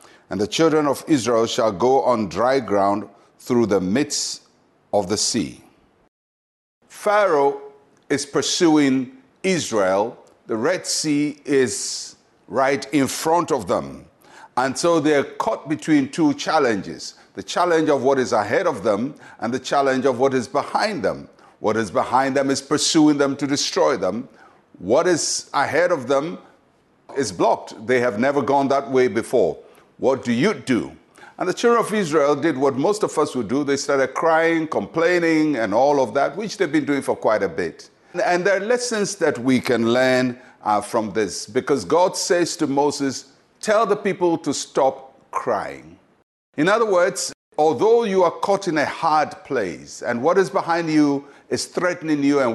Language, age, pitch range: English, 60-79, 130-170 Hz